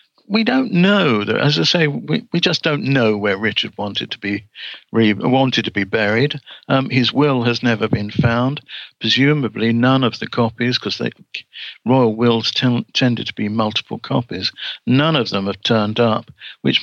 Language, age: English, 60-79